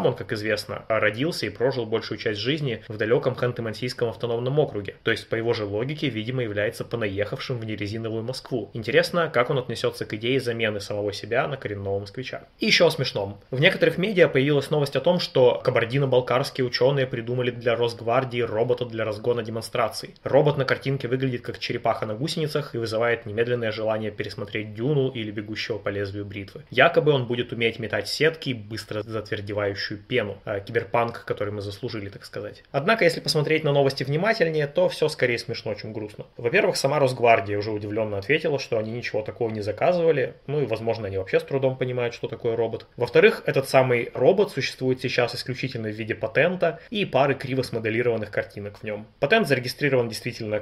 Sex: male